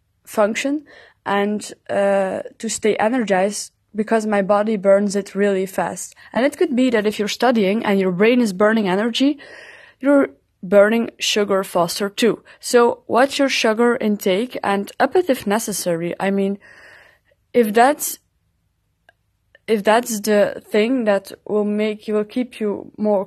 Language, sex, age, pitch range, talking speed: English, female, 20-39, 200-245 Hz, 150 wpm